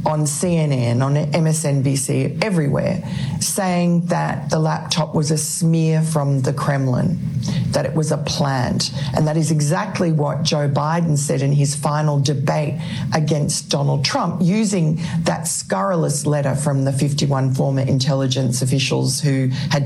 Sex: female